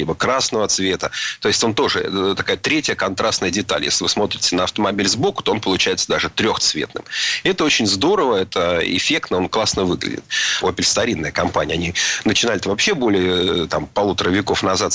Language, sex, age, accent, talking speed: Russian, male, 30-49, native, 165 wpm